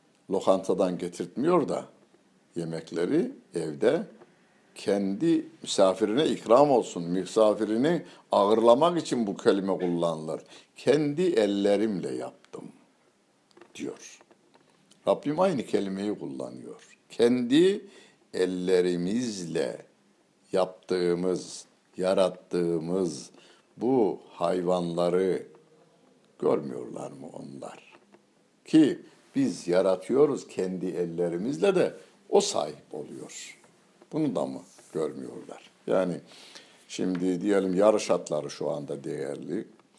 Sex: male